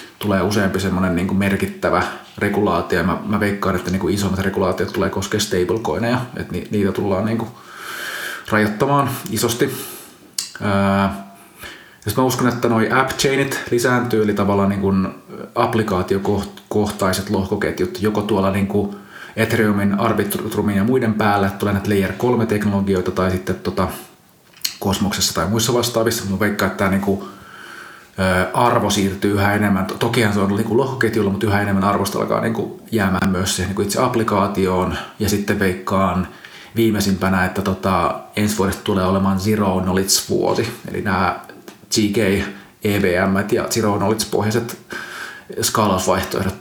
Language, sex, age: Finnish, male, 30-49